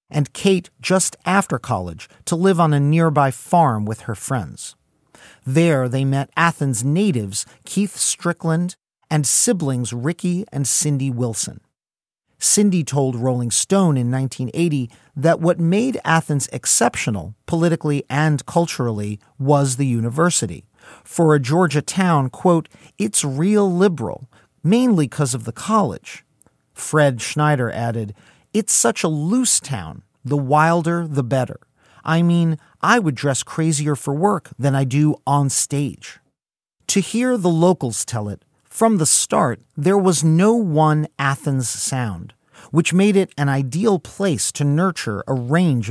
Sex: male